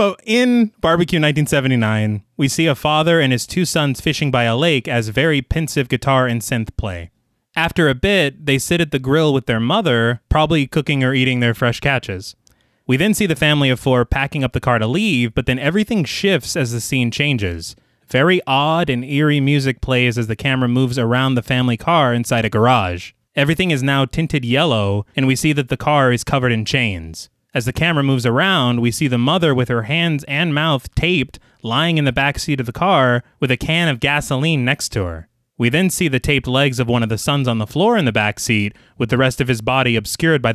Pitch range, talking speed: 120-150 Hz, 225 wpm